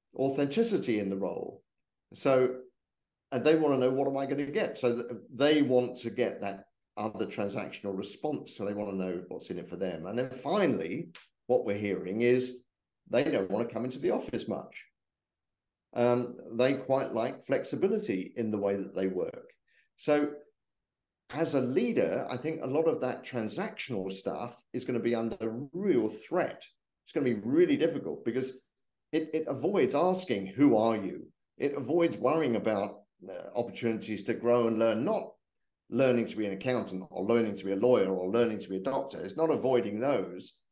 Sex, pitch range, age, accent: male, 110-135 Hz, 50-69, British